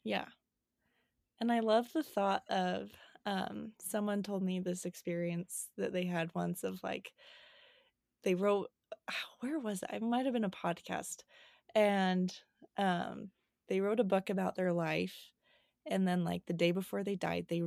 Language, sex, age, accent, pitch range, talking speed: English, female, 20-39, American, 180-220 Hz, 165 wpm